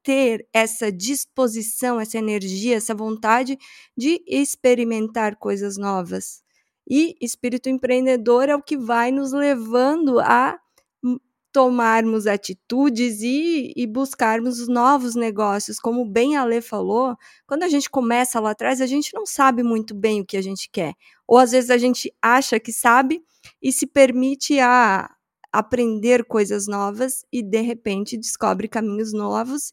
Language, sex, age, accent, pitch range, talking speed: Portuguese, female, 20-39, Brazilian, 225-275 Hz, 145 wpm